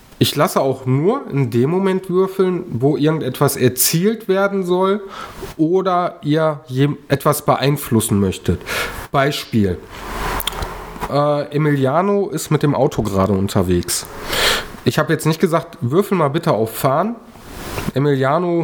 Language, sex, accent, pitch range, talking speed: German, male, German, 115-165 Hz, 120 wpm